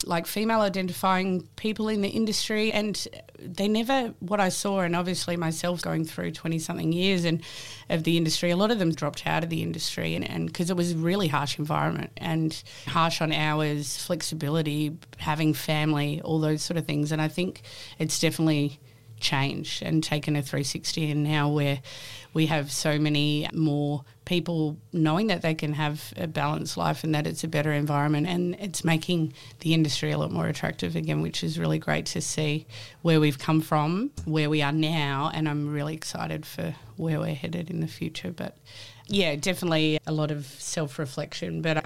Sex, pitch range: female, 145-165 Hz